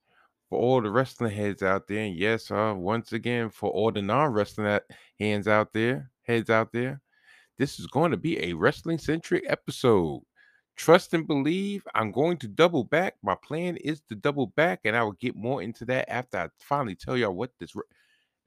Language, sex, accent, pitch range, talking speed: English, male, American, 105-130 Hz, 200 wpm